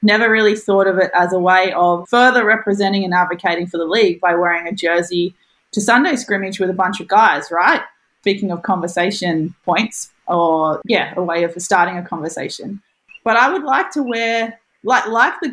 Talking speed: 195 wpm